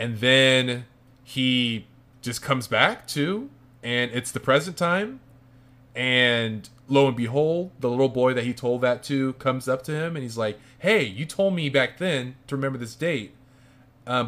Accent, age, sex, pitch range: American, 20-39, male, 120-140 Hz